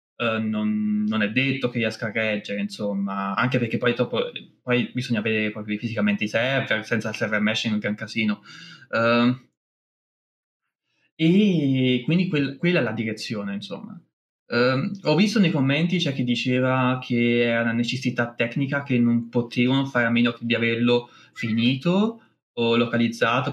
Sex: male